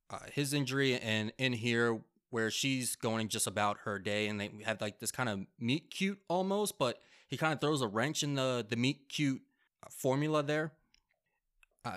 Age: 20-39